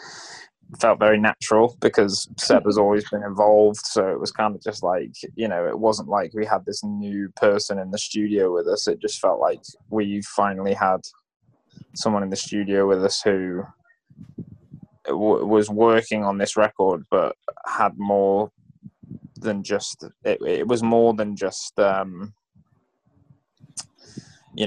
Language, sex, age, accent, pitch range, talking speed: Indonesian, male, 20-39, British, 100-110 Hz, 155 wpm